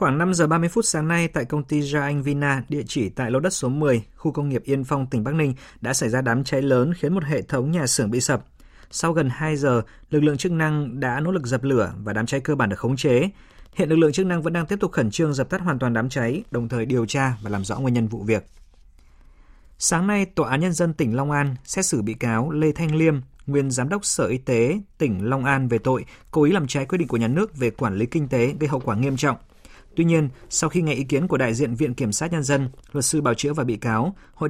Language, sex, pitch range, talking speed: Vietnamese, male, 120-155 Hz, 280 wpm